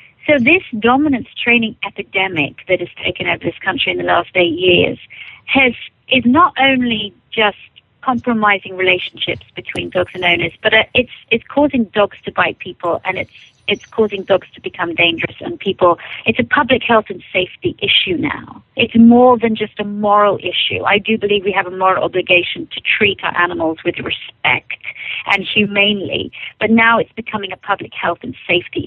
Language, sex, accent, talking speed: English, female, British, 175 wpm